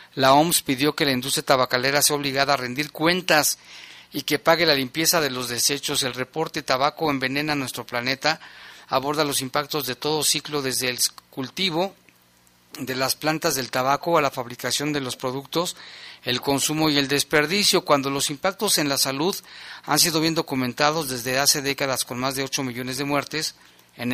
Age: 40-59